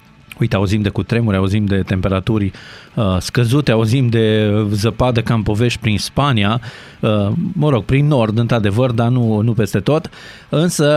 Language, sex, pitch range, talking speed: Romanian, male, 100-125 Hz, 150 wpm